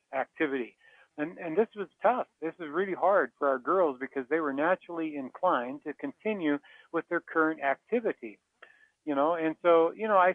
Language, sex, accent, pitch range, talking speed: English, male, American, 150-205 Hz, 180 wpm